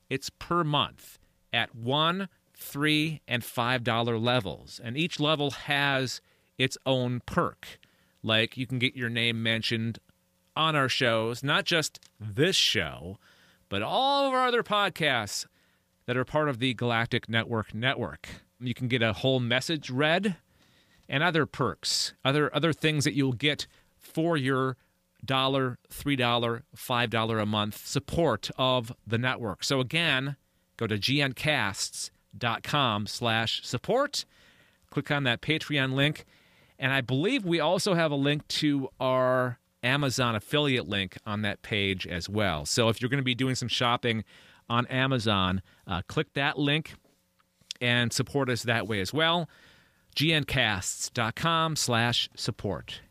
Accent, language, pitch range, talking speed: American, English, 110-145 Hz, 140 wpm